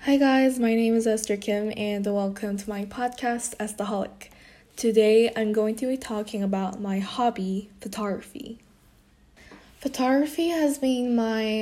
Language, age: Korean, 10-29